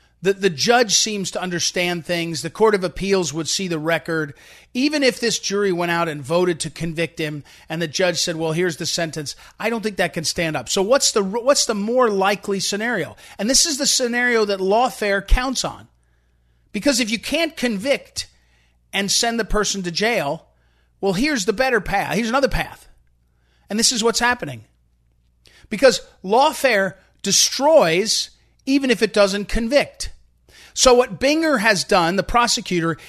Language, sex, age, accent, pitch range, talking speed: English, male, 40-59, American, 175-255 Hz, 175 wpm